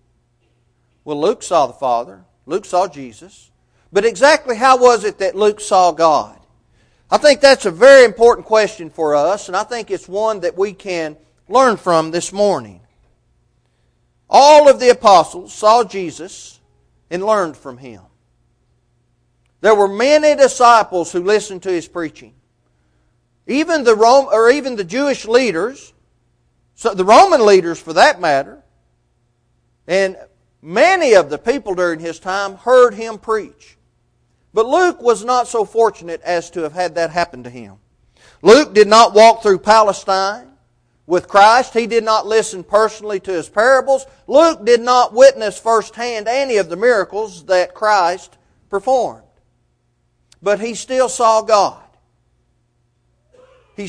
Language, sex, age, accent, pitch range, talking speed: English, male, 40-59, American, 165-235 Hz, 145 wpm